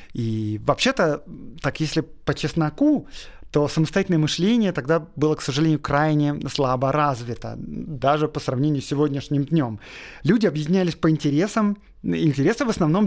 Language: Russian